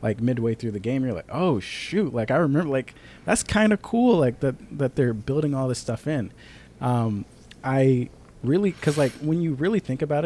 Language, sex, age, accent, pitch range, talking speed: English, male, 20-39, American, 110-140 Hz, 210 wpm